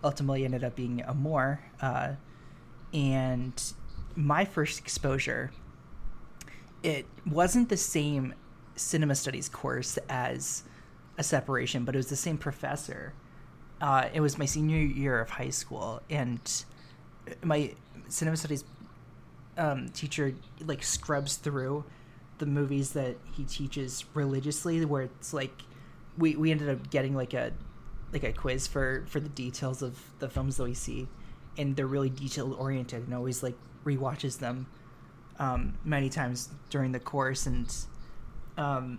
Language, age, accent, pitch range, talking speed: English, 20-39, American, 130-150 Hz, 140 wpm